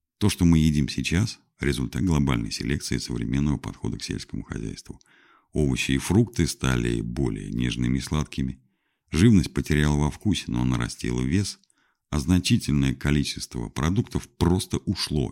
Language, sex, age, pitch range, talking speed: Russian, male, 50-69, 70-95 Hz, 135 wpm